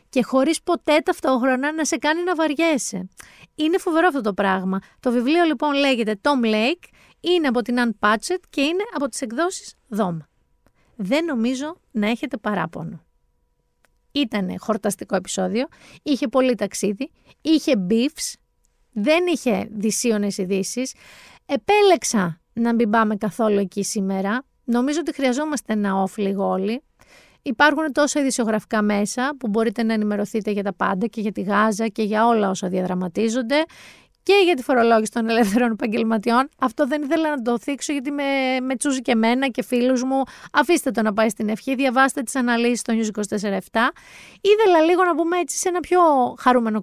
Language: Greek